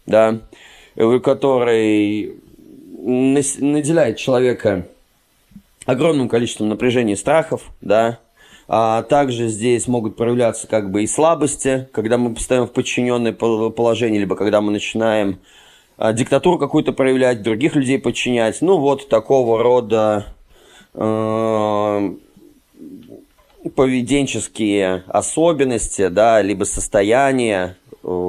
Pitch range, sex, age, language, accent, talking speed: 110-130 Hz, male, 20-39, Russian, native, 95 wpm